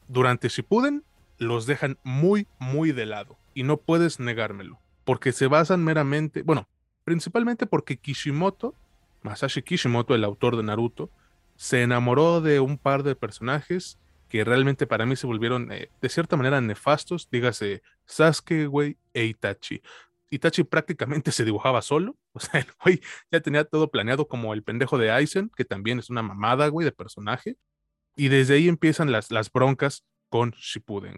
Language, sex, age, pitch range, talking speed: Spanish, male, 20-39, 115-150 Hz, 160 wpm